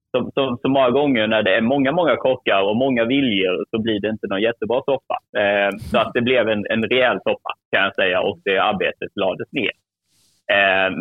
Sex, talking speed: male, 215 wpm